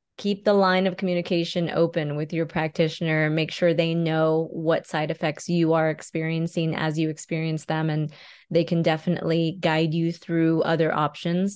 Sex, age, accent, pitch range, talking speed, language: female, 20-39, American, 165-190 Hz, 165 wpm, English